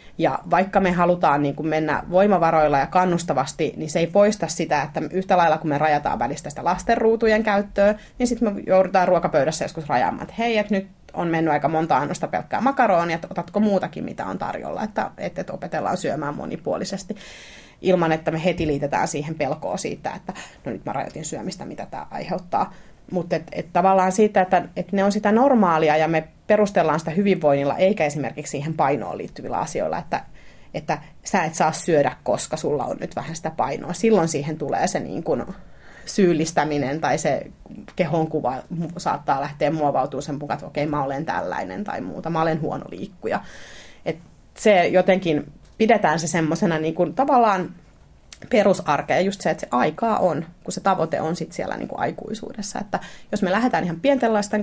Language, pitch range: Finnish, 160-200 Hz